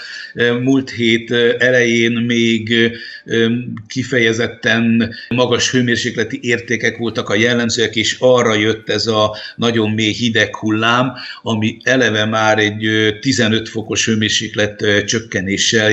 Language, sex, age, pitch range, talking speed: Hungarian, male, 60-79, 110-120 Hz, 105 wpm